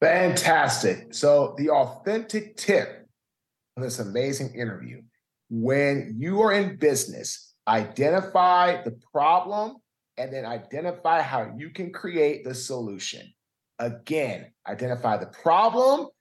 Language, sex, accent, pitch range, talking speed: English, male, American, 125-175 Hz, 110 wpm